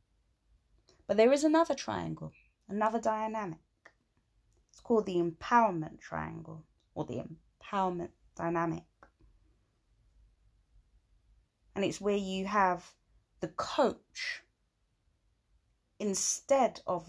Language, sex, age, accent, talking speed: English, female, 20-39, British, 90 wpm